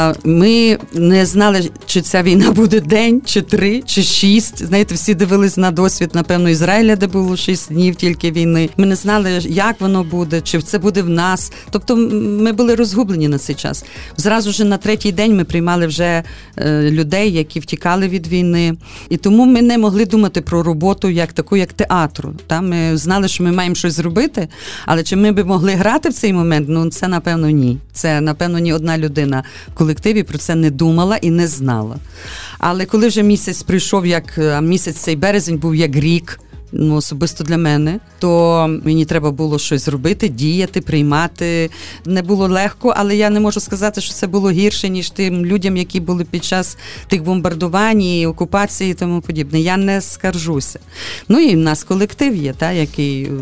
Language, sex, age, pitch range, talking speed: Ukrainian, female, 40-59, 160-200 Hz, 185 wpm